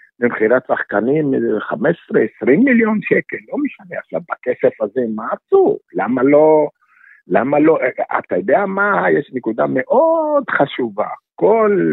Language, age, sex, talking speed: Hebrew, 60-79, male, 120 wpm